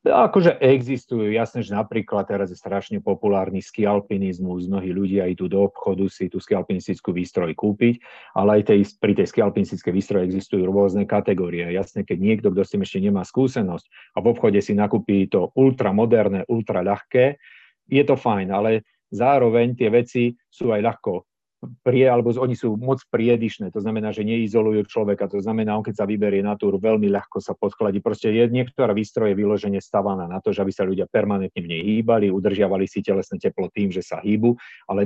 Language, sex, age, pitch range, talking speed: Slovak, male, 50-69, 100-120 Hz, 175 wpm